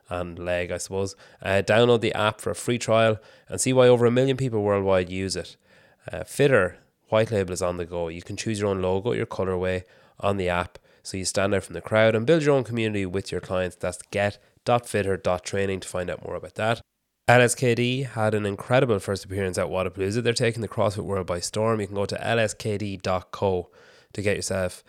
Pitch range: 90-110 Hz